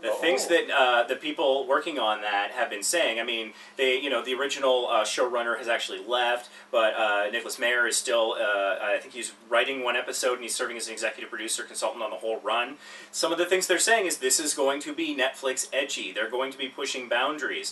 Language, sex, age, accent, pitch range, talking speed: English, male, 30-49, American, 115-140 Hz, 235 wpm